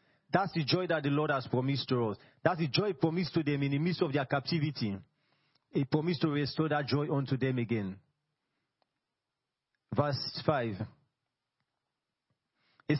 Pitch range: 135-175 Hz